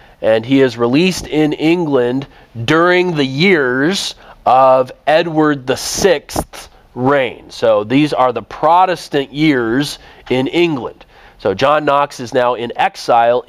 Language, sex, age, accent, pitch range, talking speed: English, male, 40-59, American, 125-160 Hz, 130 wpm